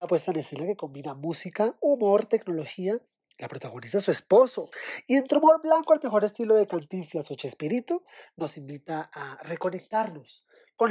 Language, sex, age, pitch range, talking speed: Spanish, male, 30-49, 150-225 Hz, 165 wpm